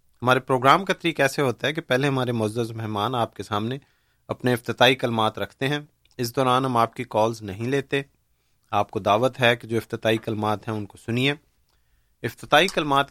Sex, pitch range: male, 105-125 Hz